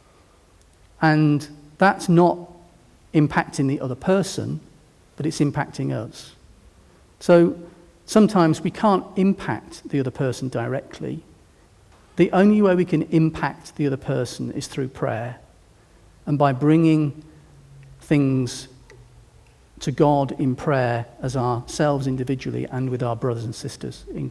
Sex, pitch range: male, 115-170 Hz